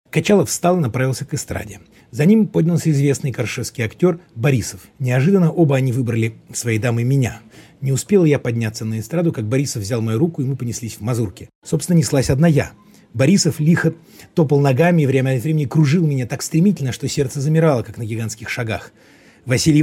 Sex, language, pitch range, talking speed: male, Russian, 115-155 Hz, 180 wpm